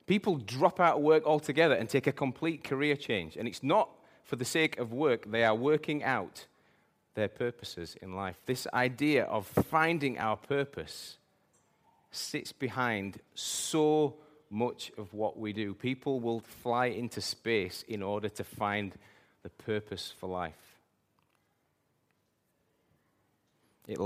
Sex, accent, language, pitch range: male, British, English, 105-140 Hz